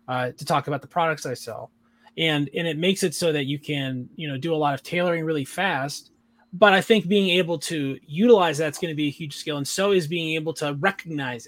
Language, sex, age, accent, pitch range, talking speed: English, male, 20-39, American, 145-190 Hz, 245 wpm